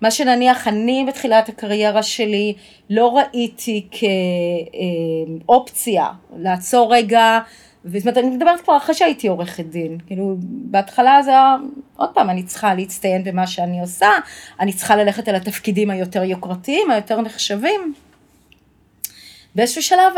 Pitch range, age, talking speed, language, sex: 190-250 Hz, 30-49, 130 wpm, Hebrew, female